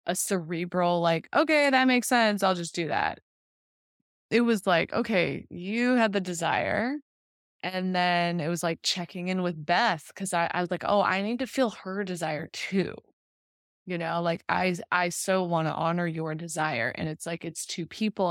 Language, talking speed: English, 190 wpm